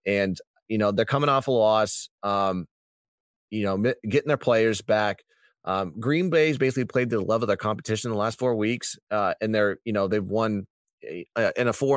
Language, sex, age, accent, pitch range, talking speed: English, male, 30-49, American, 100-125 Hz, 215 wpm